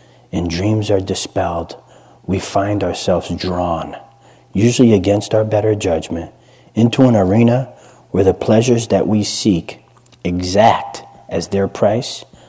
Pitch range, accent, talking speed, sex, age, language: 90-120 Hz, American, 125 wpm, male, 40-59, English